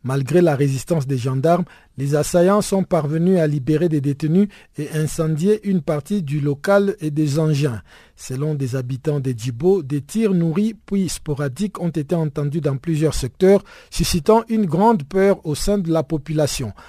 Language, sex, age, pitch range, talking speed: French, male, 50-69, 145-185 Hz, 165 wpm